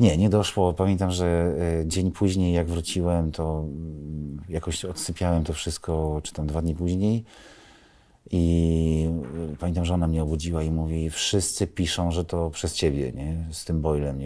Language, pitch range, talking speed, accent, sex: Polish, 80-95 Hz, 155 wpm, native, male